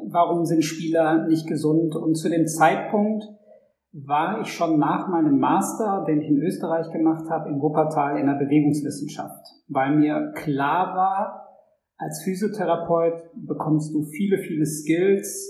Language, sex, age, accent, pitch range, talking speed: German, male, 50-69, German, 150-175 Hz, 145 wpm